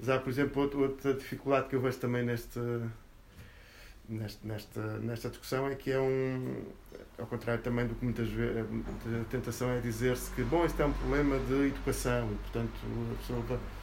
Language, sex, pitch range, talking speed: Portuguese, male, 110-135 Hz, 180 wpm